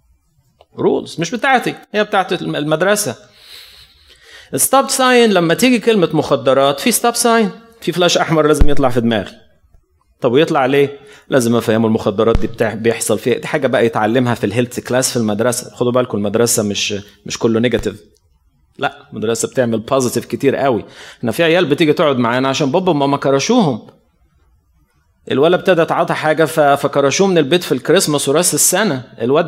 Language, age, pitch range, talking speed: Arabic, 30-49, 120-175 Hz, 155 wpm